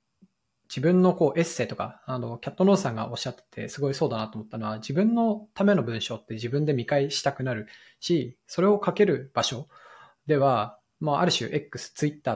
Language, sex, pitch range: Japanese, male, 120-155 Hz